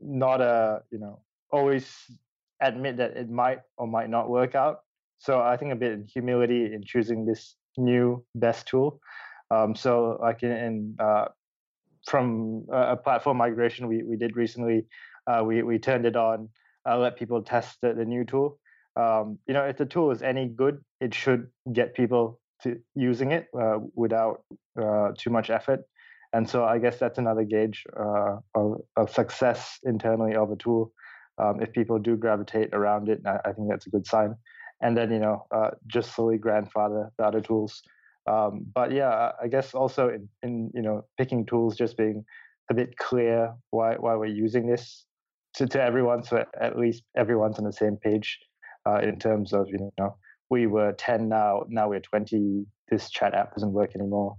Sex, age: male, 20-39